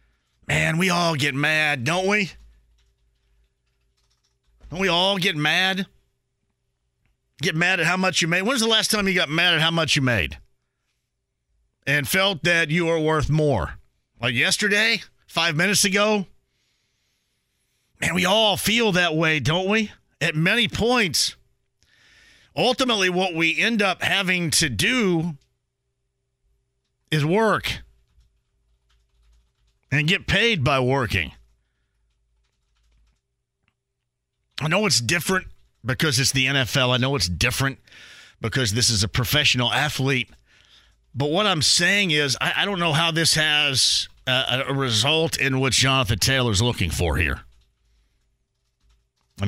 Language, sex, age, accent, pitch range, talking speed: English, male, 50-69, American, 120-170 Hz, 135 wpm